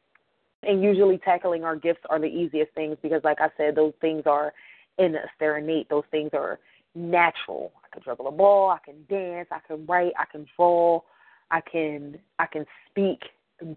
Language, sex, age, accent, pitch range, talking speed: English, female, 20-39, American, 155-180 Hz, 190 wpm